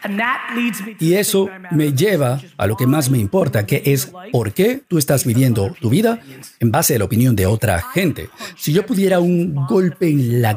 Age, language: 50-69, Spanish